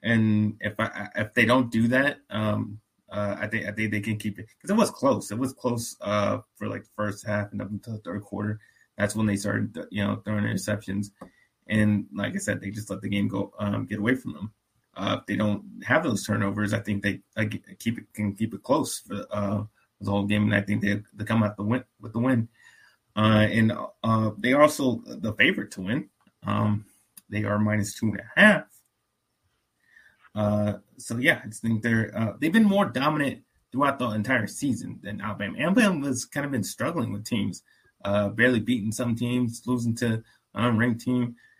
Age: 20-39